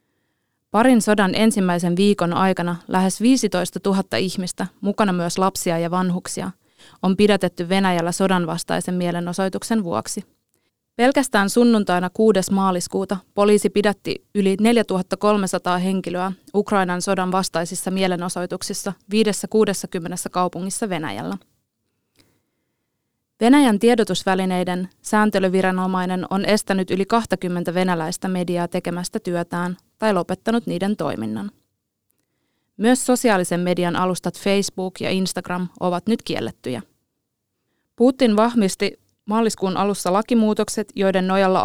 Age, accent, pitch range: 20-39, native, 180-205 Hz